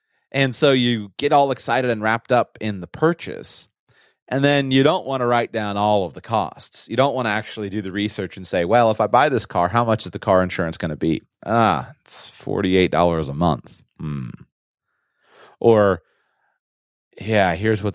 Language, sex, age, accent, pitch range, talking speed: English, male, 30-49, American, 85-115 Hz, 195 wpm